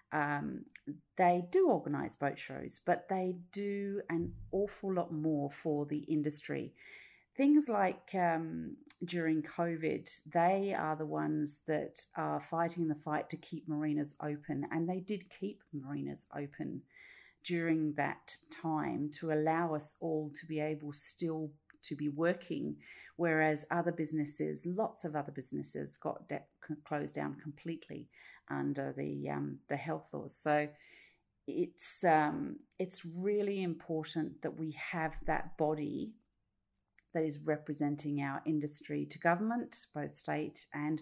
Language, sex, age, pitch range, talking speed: English, female, 40-59, 150-175 Hz, 135 wpm